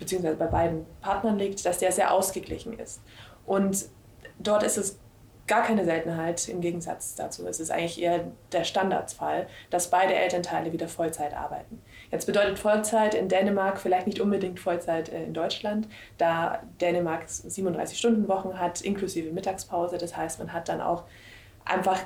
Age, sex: 20-39, female